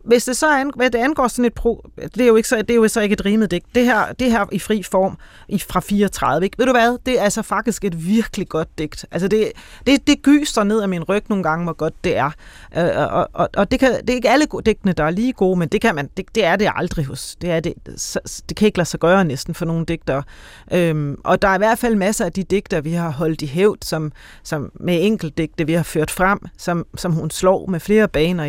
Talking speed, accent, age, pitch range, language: 265 wpm, native, 30-49, 170-240 Hz, Danish